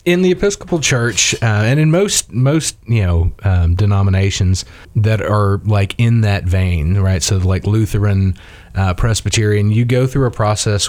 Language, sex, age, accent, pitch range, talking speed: English, male, 30-49, American, 95-115 Hz, 165 wpm